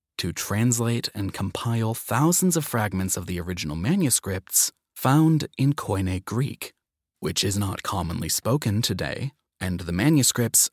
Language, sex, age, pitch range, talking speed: English, male, 30-49, 95-130 Hz, 135 wpm